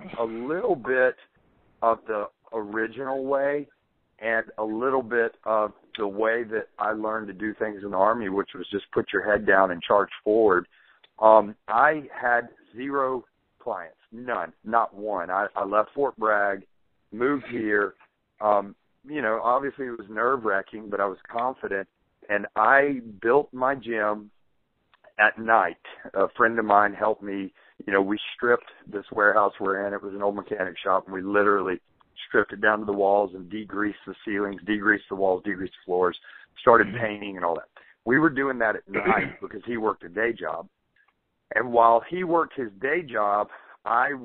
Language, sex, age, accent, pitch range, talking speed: English, male, 50-69, American, 100-120 Hz, 175 wpm